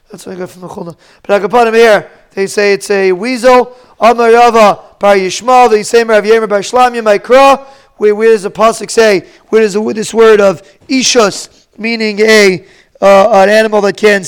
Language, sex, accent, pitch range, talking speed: English, male, American, 205-240 Hz, 175 wpm